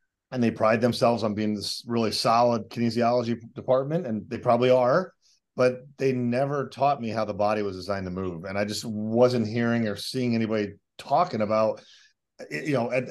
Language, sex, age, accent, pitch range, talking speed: English, male, 30-49, American, 105-125 Hz, 185 wpm